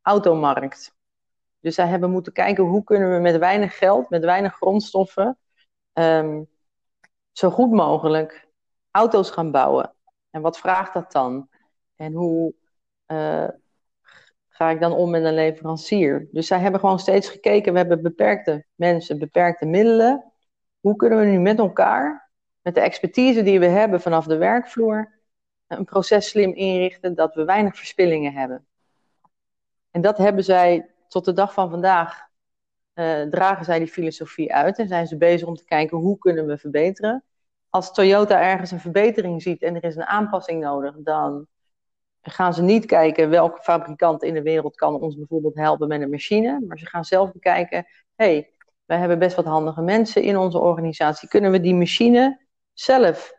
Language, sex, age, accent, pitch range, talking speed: Dutch, female, 40-59, Dutch, 160-195 Hz, 165 wpm